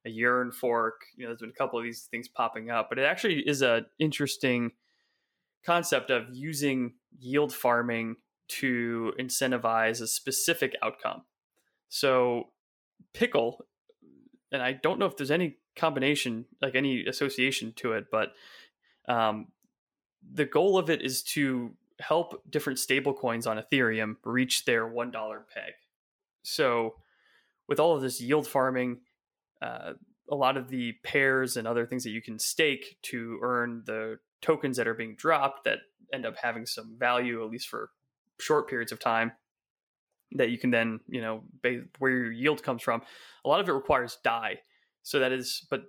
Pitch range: 115-135 Hz